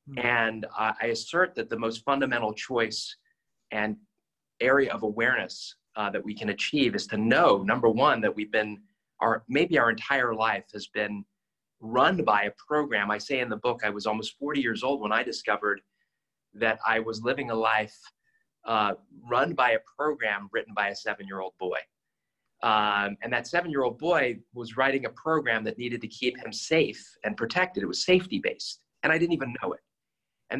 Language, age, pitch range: English, 30-49, 105-140 Hz